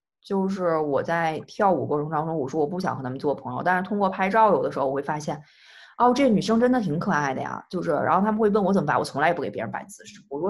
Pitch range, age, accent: 155-215 Hz, 20-39, native